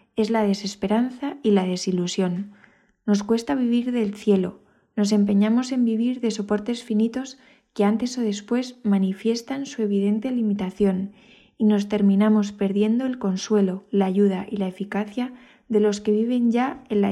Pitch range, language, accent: 200-235 Hz, Spanish, Spanish